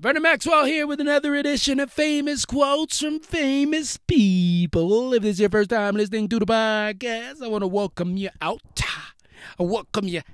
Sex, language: male, English